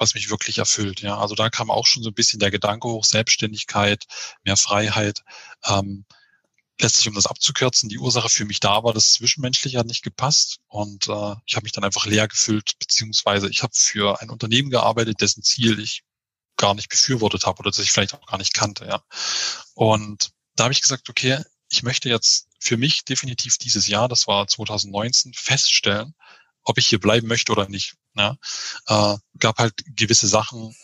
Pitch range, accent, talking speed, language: 105-120 Hz, German, 190 wpm, German